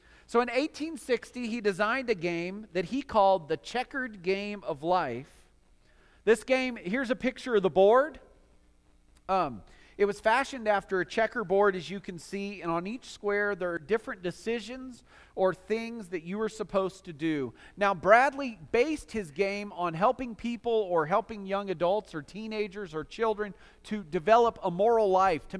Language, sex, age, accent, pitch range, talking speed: English, male, 40-59, American, 160-220 Hz, 165 wpm